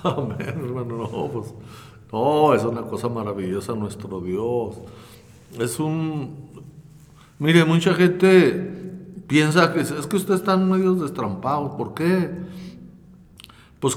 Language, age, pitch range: Spanish, 60-79, 140-195 Hz